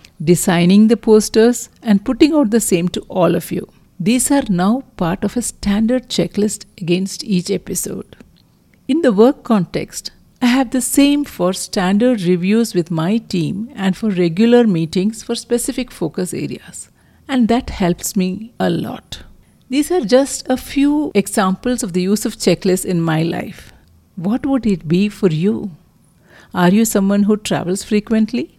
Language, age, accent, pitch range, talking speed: English, 50-69, Indian, 185-235 Hz, 160 wpm